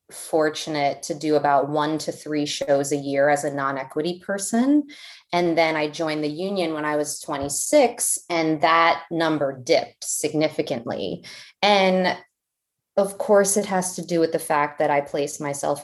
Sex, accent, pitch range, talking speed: female, American, 150-175 Hz, 165 wpm